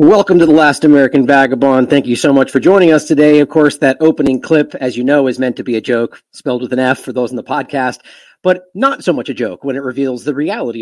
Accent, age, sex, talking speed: American, 40-59, male, 265 wpm